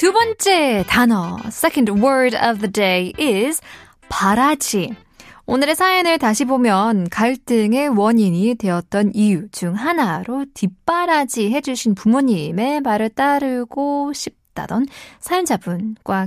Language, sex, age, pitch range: Korean, female, 20-39, 190-255 Hz